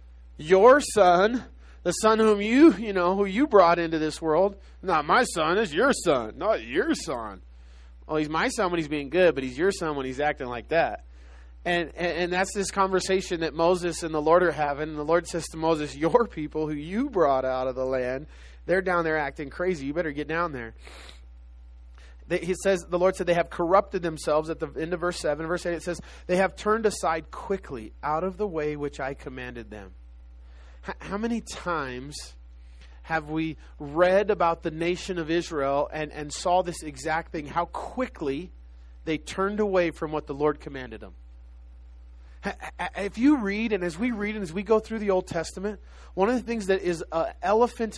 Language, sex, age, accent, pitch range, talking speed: English, male, 20-39, American, 130-190 Hz, 200 wpm